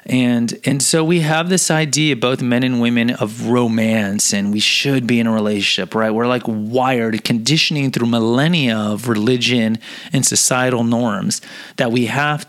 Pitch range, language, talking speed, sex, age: 115-140 Hz, English, 170 wpm, male, 30-49